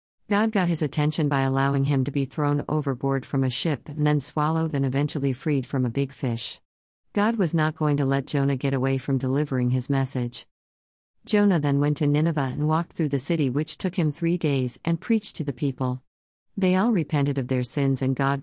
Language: English